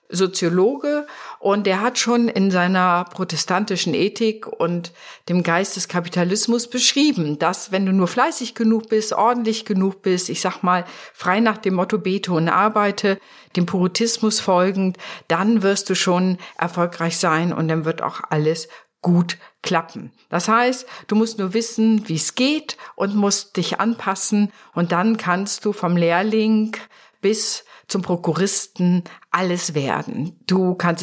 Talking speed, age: 150 wpm, 50-69